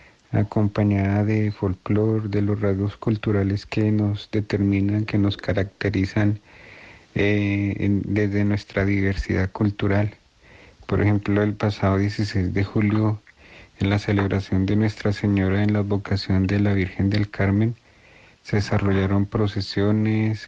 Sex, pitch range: male, 100-105 Hz